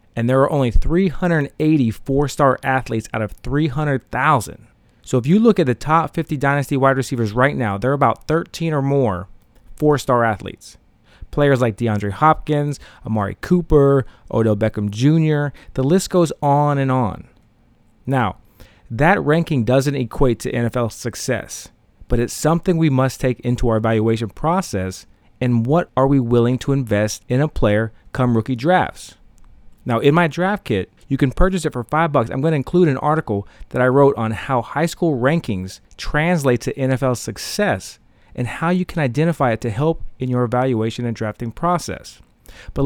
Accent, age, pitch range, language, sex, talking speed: American, 30-49, 115-155 Hz, English, male, 170 wpm